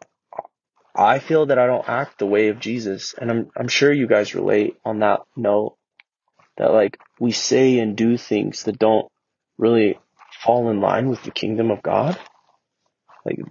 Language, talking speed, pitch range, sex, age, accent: English, 175 wpm, 110-125 Hz, male, 20-39, American